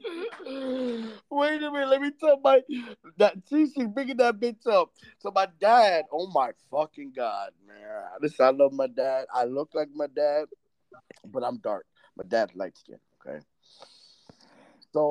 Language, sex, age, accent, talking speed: English, male, 20-39, American, 165 wpm